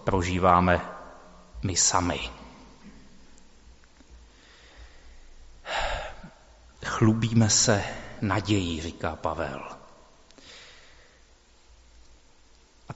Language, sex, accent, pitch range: Czech, male, native, 100-130 Hz